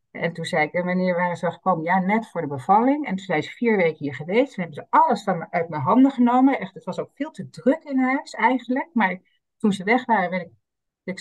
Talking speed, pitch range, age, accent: 270 wpm, 170-235 Hz, 50-69, Dutch